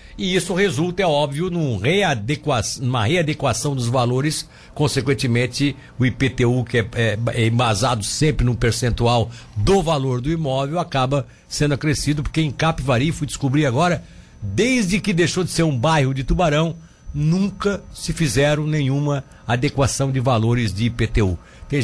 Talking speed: 135 wpm